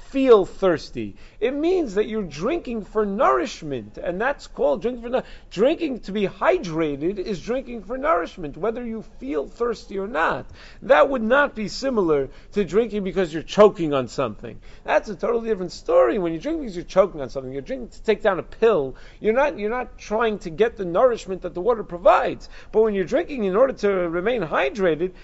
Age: 40-59